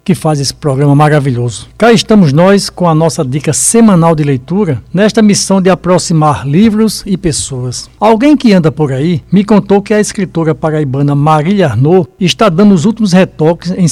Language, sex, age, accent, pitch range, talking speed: Portuguese, male, 60-79, Brazilian, 150-205 Hz, 175 wpm